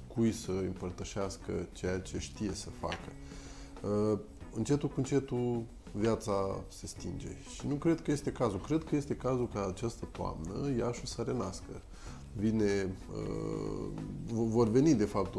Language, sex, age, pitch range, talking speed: Romanian, male, 20-39, 95-115 Hz, 135 wpm